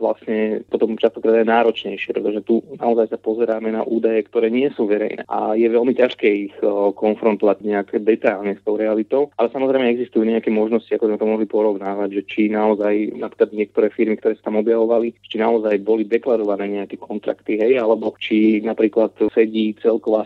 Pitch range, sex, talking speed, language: 110-115 Hz, male, 180 wpm, Slovak